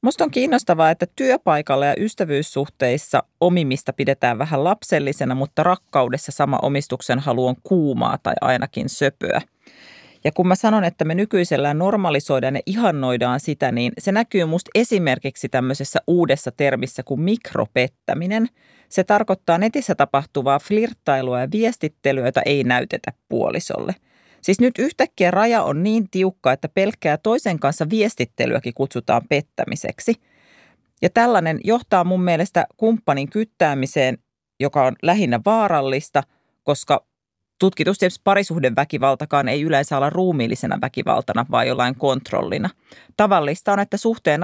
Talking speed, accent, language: 125 wpm, native, Finnish